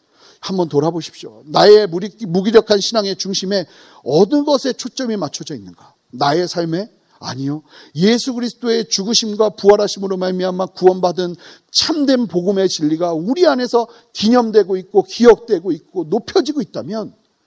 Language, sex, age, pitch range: Korean, male, 40-59, 155-220 Hz